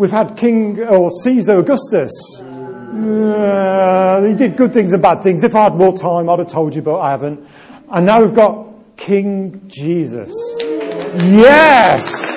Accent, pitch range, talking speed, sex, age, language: British, 165-220 Hz, 160 wpm, male, 40-59, English